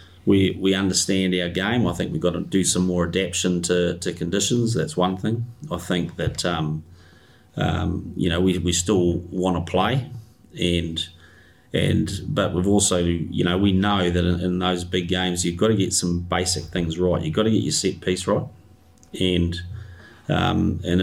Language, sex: English, male